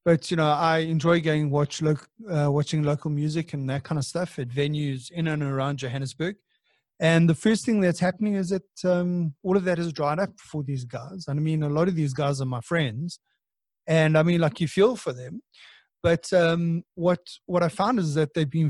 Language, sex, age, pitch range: English, male, 30-49, 145-170 Hz